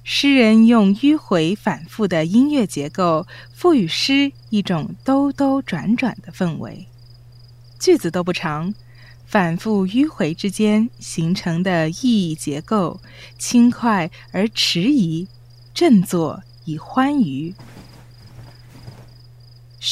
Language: Chinese